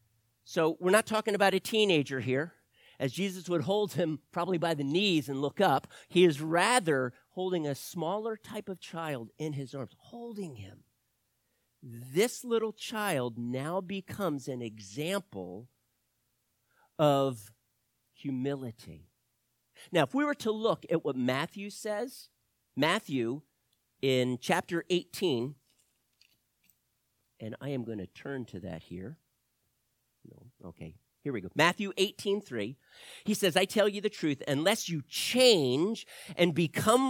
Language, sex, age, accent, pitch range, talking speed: English, male, 50-69, American, 135-205 Hz, 135 wpm